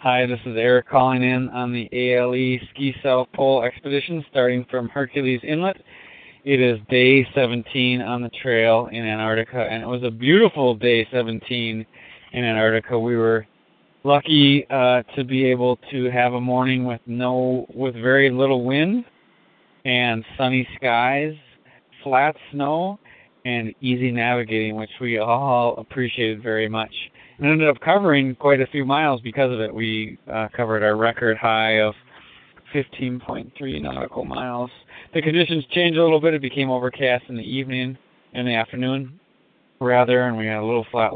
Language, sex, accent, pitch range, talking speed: English, male, American, 115-135 Hz, 155 wpm